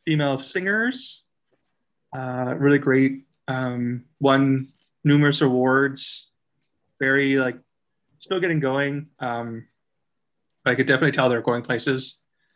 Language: English